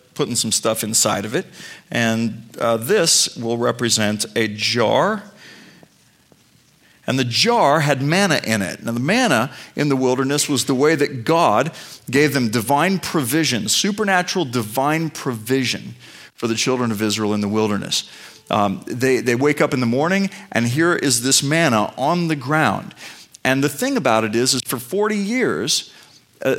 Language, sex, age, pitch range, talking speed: English, male, 40-59, 120-160 Hz, 165 wpm